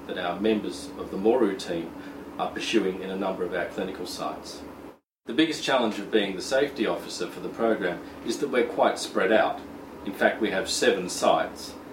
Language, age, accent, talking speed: English, 40-59, Australian, 195 wpm